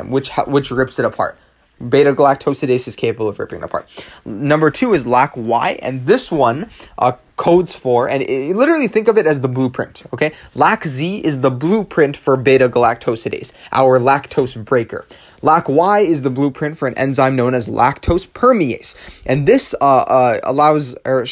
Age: 20-39